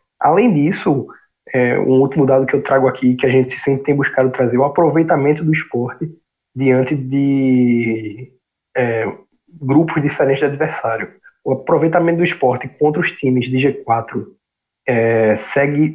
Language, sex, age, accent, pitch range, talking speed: Portuguese, male, 20-39, Brazilian, 125-145 Hz, 145 wpm